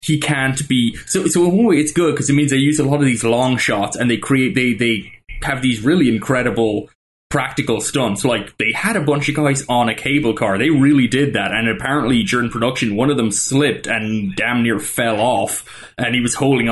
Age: 20-39